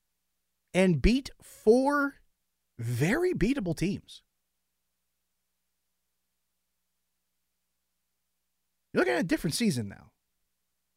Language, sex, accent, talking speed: English, male, American, 70 wpm